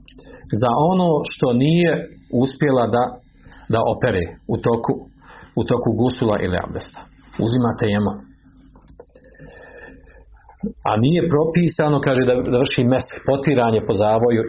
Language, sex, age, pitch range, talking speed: Croatian, male, 50-69, 105-135 Hz, 110 wpm